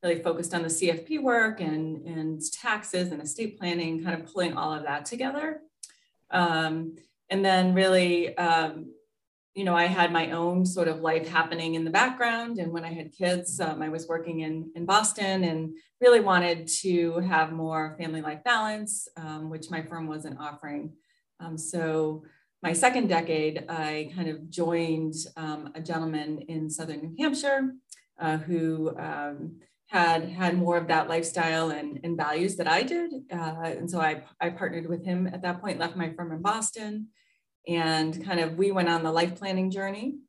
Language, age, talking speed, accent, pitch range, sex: English, 30-49, 175 wpm, American, 160-180 Hz, female